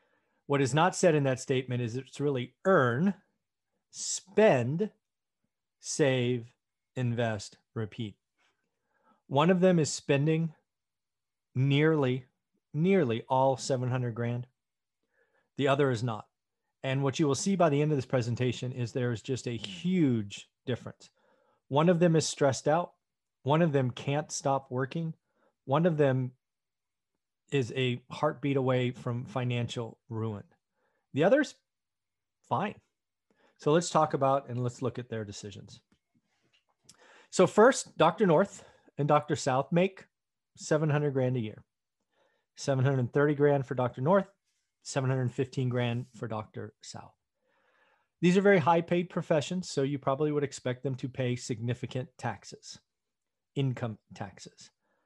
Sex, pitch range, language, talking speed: male, 125-155 Hz, English, 135 wpm